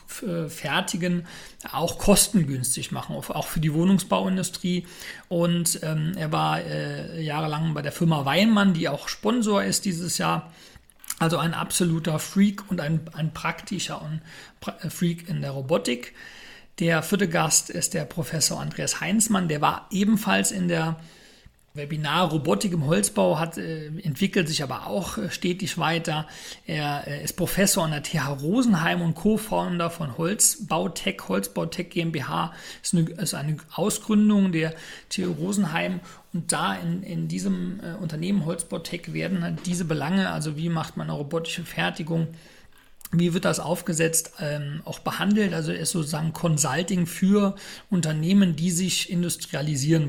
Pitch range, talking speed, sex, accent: 160-185 Hz, 140 wpm, male, German